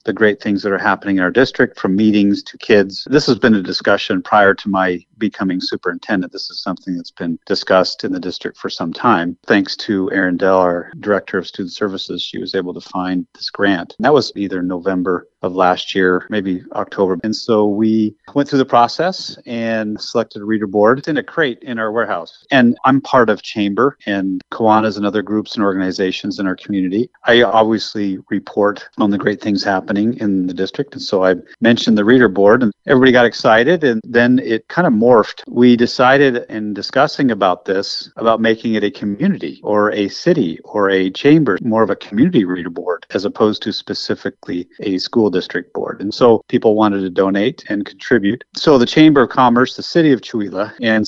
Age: 40-59